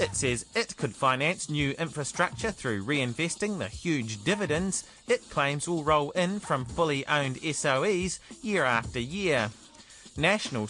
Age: 30-49